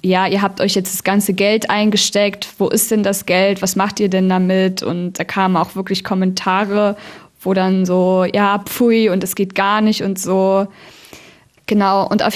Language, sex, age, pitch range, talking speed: German, female, 20-39, 185-220 Hz, 195 wpm